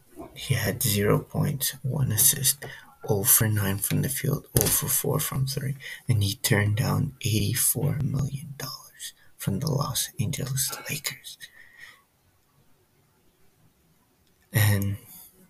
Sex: male